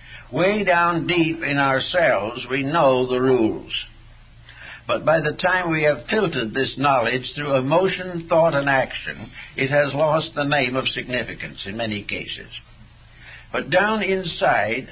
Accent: American